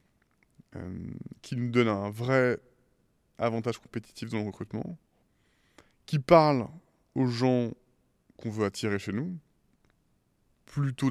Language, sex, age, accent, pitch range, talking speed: French, male, 20-39, French, 110-130 Hz, 110 wpm